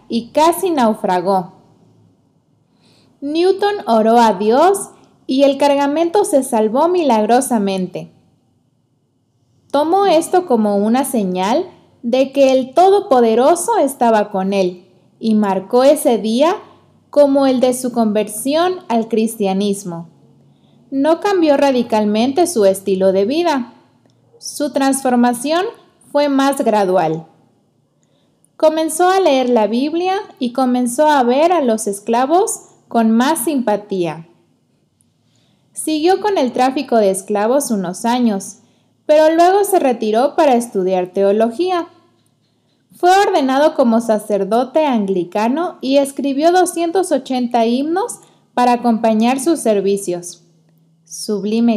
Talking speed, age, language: 105 wpm, 20-39, Spanish